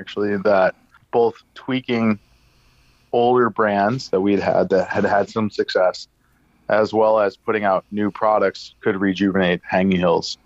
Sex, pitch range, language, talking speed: male, 95-110 Hz, English, 145 wpm